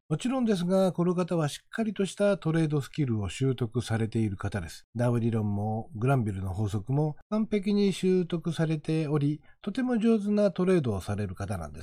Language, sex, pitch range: Japanese, male, 115-180 Hz